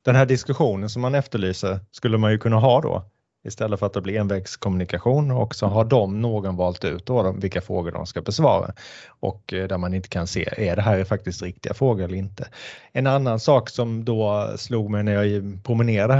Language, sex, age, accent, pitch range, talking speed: Swedish, male, 30-49, Norwegian, 100-125 Hz, 215 wpm